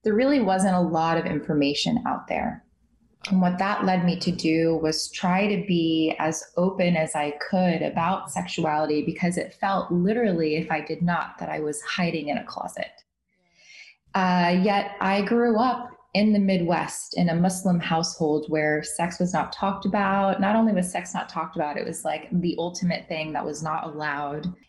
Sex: female